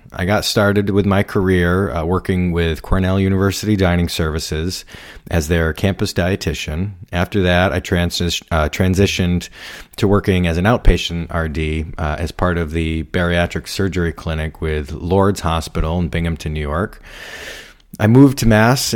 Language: English